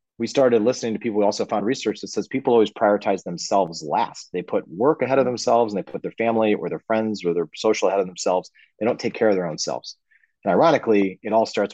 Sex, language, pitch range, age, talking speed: male, English, 95-115 Hz, 30-49, 250 wpm